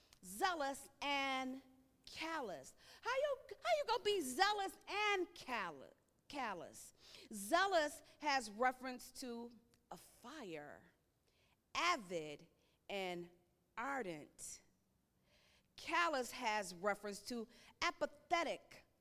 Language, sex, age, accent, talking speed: English, female, 40-59, American, 85 wpm